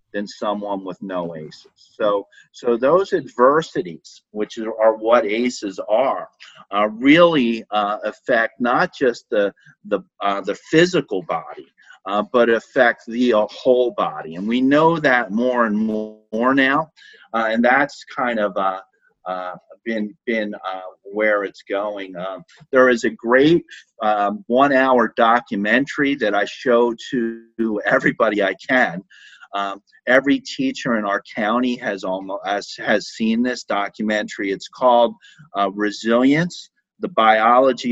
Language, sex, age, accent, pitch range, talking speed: English, male, 40-59, American, 105-125 Hz, 140 wpm